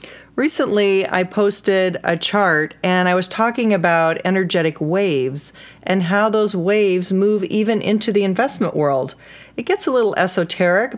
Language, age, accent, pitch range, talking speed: English, 40-59, American, 155-205 Hz, 150 wpm